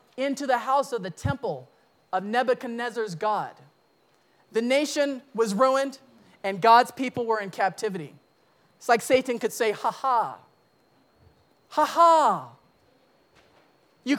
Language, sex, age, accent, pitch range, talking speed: English, male, 40-59, American, 205-280 Hz, 115 wpm